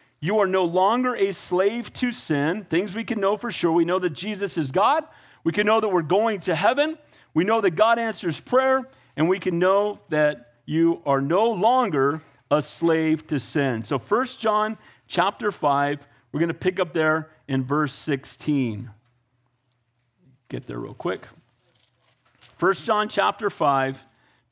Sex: male